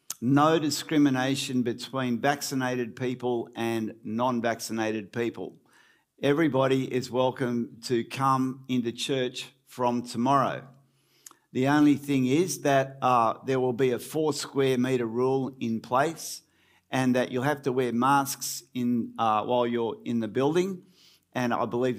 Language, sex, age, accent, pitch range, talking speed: English, male, 50-69, Australian, 120-140 Hz, 130 wpm